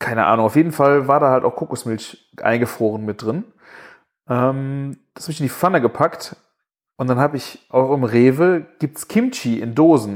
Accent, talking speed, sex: German, 190 wpm, male